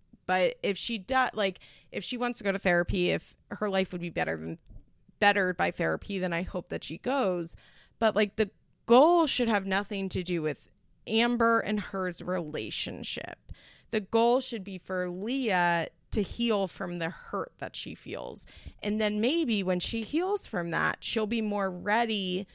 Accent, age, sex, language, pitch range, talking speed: American, 30-49, female, English, 180-225 Hz, 180 wpm